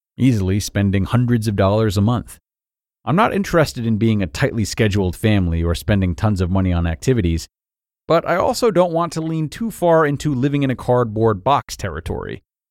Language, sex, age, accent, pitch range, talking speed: English, male, 40-59, American, 95-125 Hz, 185 wpm